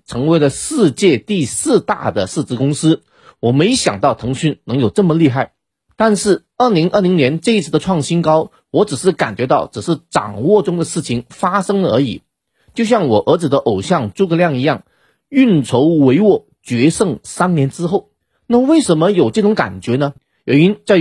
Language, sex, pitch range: Chinese, male, 145-210 Hz